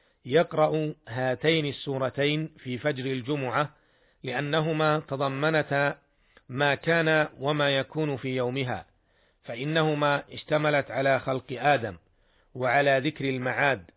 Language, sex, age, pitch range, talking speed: Arabic, male, 50-69, 125-150 Hz, 95 wpm